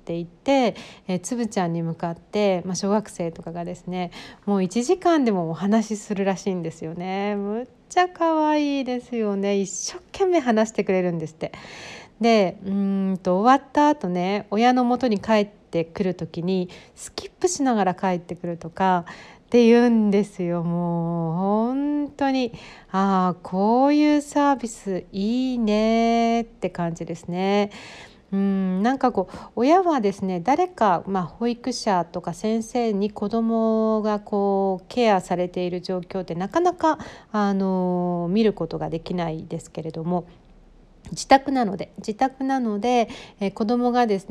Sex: female